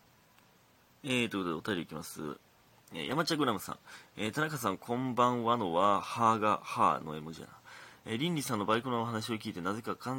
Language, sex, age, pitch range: Japanese, male, 30-49, 100-150 Hz